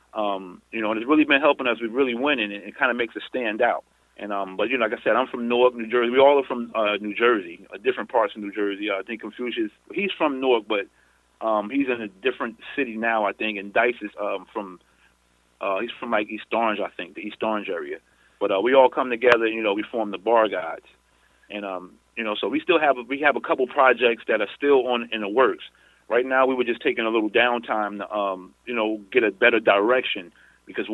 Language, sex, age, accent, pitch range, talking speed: English, male, 30-49, American, 105-135 Hz, 260 wpm